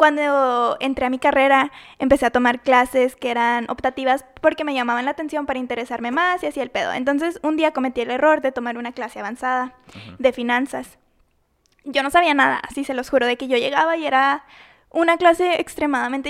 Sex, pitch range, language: female, 250-295 Hz, Spanish